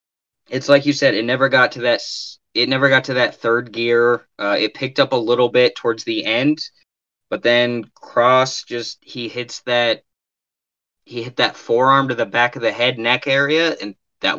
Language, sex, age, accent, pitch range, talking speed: English, male, 20-39, American, 100-130 Hz, 195 wpm